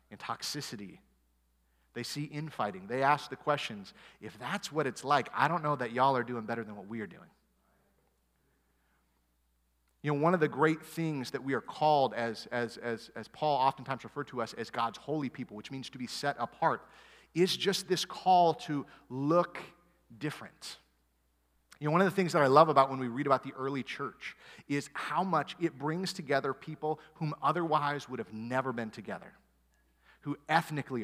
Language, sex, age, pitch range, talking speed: English, male, 30-49, 115-155 Hz, 185 wpm